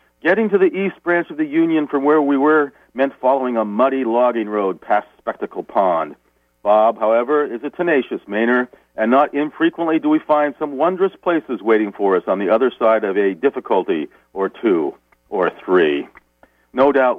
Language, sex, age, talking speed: English, male, 50-69, 180 wpm